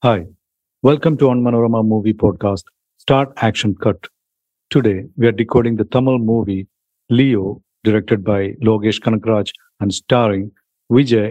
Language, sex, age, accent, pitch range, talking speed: English, male, 50-69, Indian, 105-130 Hz, 135 wpm